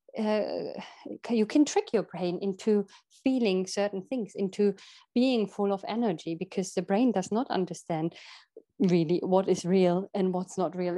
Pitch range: 185-235 Hz